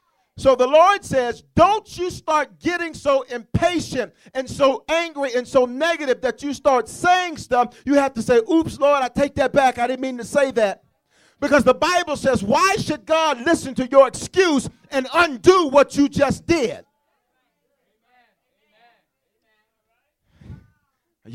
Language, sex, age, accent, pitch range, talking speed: English, male, 40-59, American, 215-290 Hz, 155 wpm